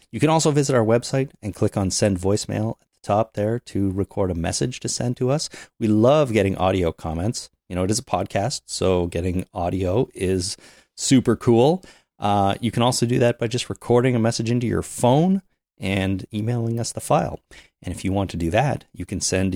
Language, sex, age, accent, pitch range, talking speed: English, male, 30-49, American, 90-115 Hz, 210 wpm